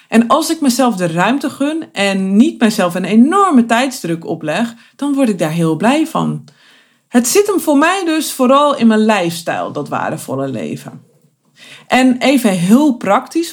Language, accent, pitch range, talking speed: Dutch, Dutch, 185-255 Hz, 170 wpm